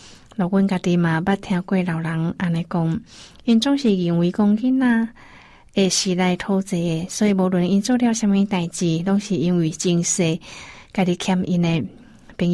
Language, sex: Chinese, female